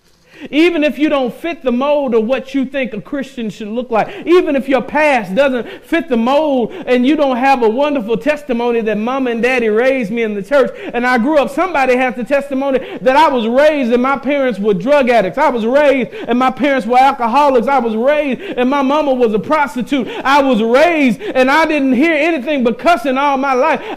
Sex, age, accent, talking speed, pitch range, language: male, 50-69, American, 220 wpm, 255-310 Hz, English